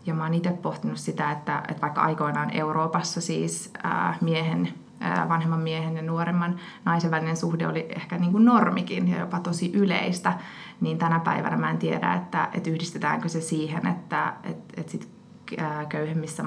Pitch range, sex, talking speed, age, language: 160-180 Hz, female, 145 wpm, 20-39, Finnish